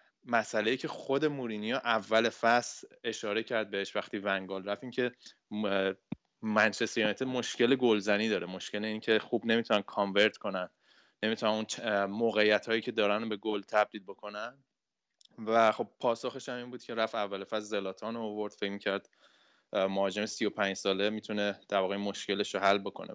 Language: Persian